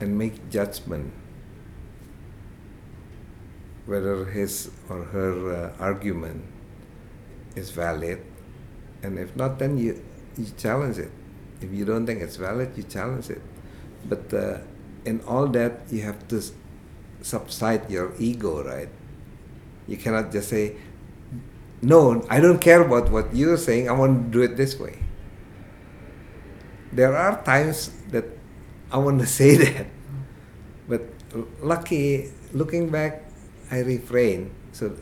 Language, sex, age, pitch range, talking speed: English, male, 60-79, 100-130 Hz, 130 wpm